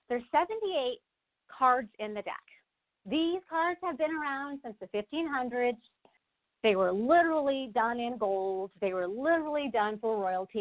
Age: 40-59